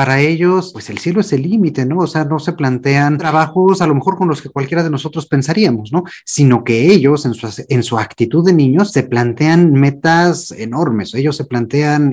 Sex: male